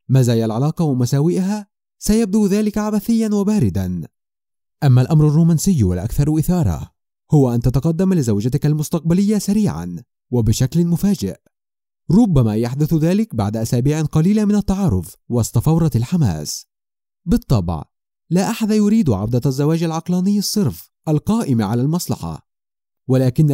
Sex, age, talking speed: male, 30-49, 105 wpm